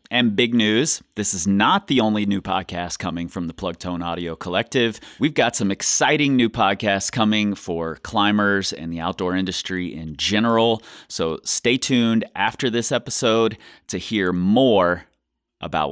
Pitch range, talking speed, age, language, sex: 85-105 Hz, 160 wpm, 30-49, English, male